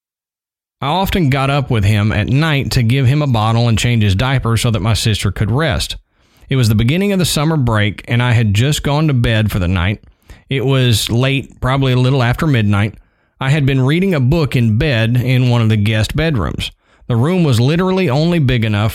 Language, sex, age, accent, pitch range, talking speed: English, male, 40-59, American, 110-140 Hz, 220 wpm